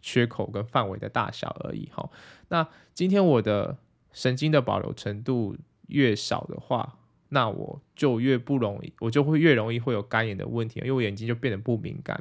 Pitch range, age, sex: 105-130 Hz, 20-39, male